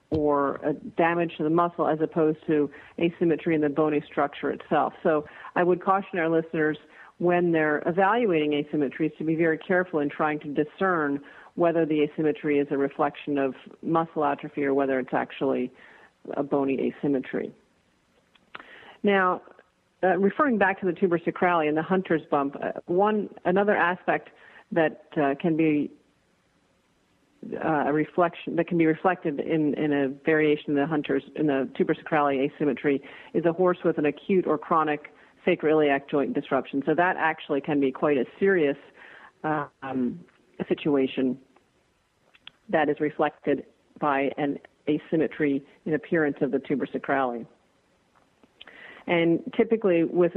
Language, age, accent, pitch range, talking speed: English, 40-59, American, 145-170 Hz, 145 wpm